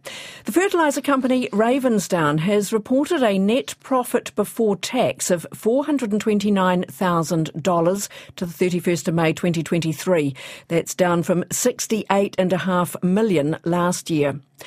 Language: English